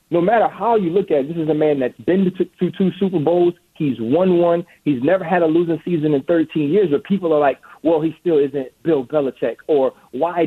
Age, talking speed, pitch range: 40-59, 245 wpm, 150-180 Hz